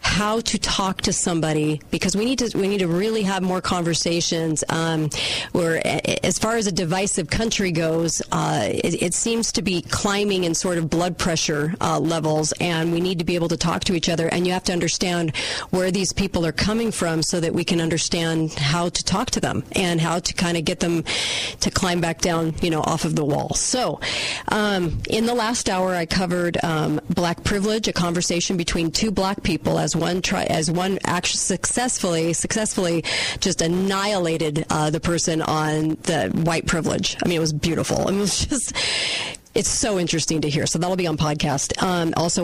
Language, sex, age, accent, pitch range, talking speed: English, female, 40-59, American, 165-195 Hz, 205 wpm